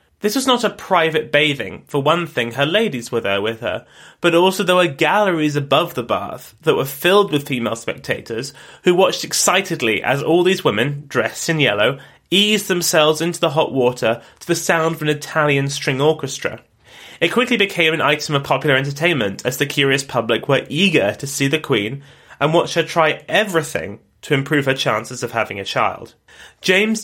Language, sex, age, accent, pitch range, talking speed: English, male, 30-49, British, 130-170 Hz, 190 wpm